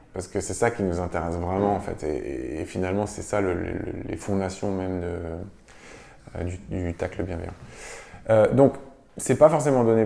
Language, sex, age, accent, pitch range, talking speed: French, male, 20-39, French, 95-115 Hz, 210 wpm